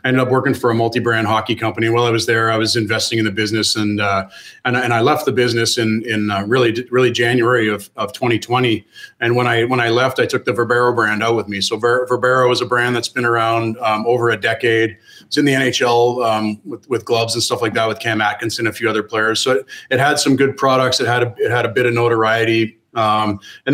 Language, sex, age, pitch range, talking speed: English, male, 30-49, 110-130 Hz, 255 wpm